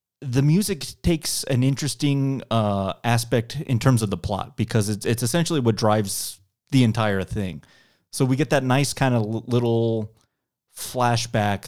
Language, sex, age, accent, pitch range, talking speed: English, male, 30-49, American, 100-125 Hz, 155 wpm